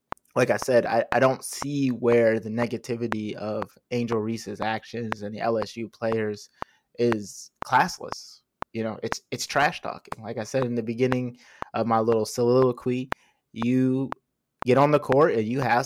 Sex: male